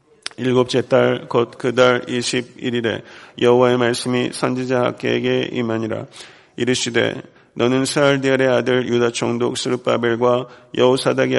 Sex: male